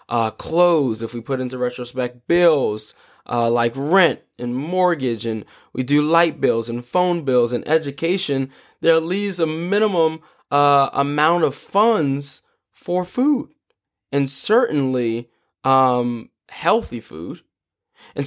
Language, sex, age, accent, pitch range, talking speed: English, male, 20-39, American, 120-155 Hz, 130 wpm